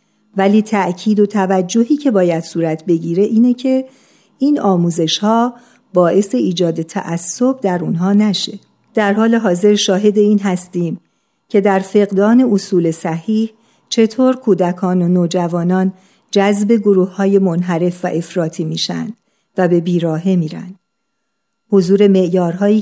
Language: Persian